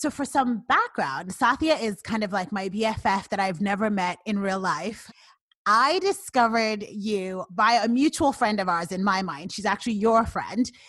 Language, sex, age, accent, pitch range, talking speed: English, female, 30-49, American, 185-235 Hz, 185 wpm